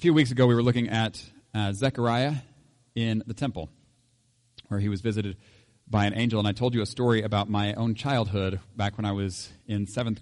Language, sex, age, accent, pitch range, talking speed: English, male, 40-59, American, 105-125 Hz, 210 wpm